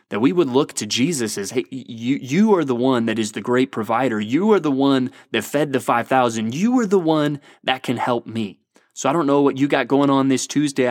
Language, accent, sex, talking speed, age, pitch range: English, American, male, 250 wpm, 20-39, 120-150 Hz